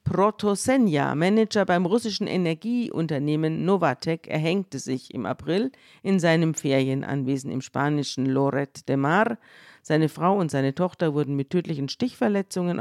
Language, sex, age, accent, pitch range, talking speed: German, female, 50-69, German, 145-195 Hz, 125 wpm